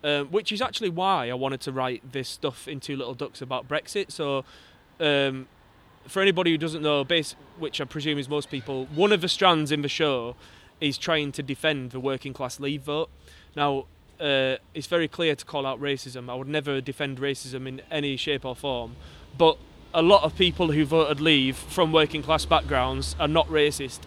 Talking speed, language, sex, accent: 200 wpm, English, male, British